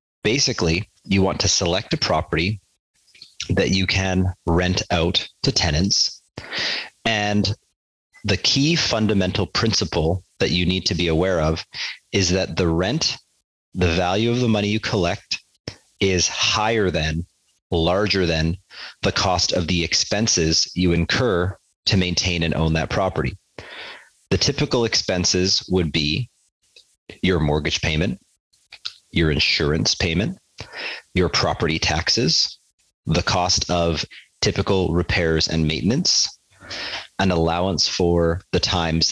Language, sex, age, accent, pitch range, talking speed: English, male, 30-49, American, 85-100 Hz, 125 wpm